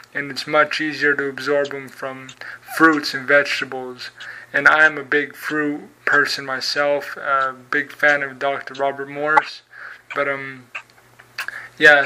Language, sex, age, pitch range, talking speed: English, male, 20-39, 140-150 Hz, 145 wpm